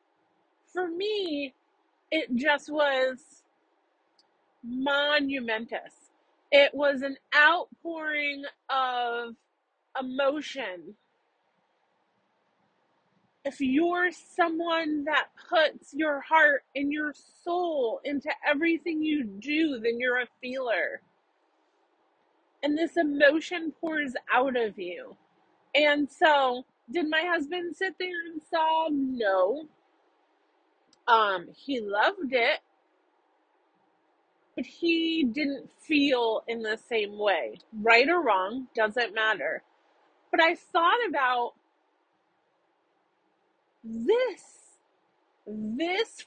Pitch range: 265-350 Hz